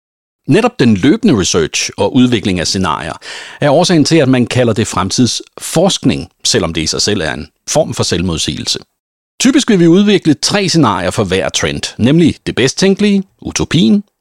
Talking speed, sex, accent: 170 wpm, male, native